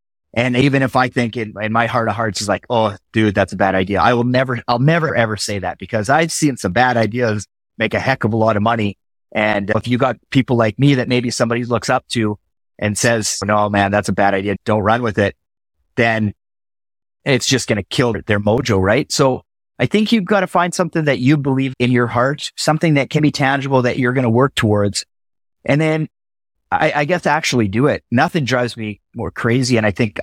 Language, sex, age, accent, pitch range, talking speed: English, male, 30-49, American, 100-125 Hz, 230 wpm